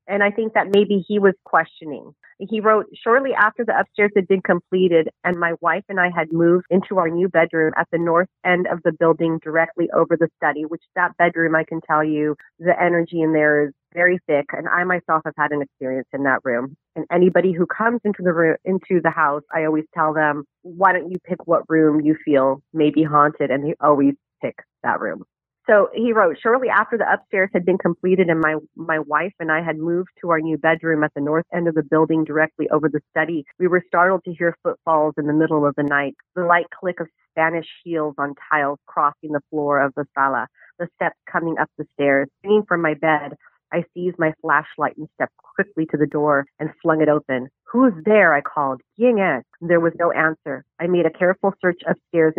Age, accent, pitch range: 30-49, American, 150-180 Hz